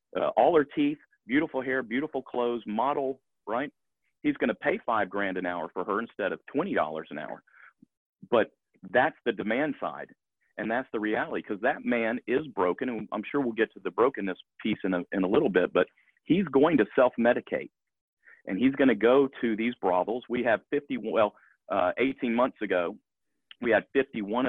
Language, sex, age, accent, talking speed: English, male, 40-59, American, 190 wpm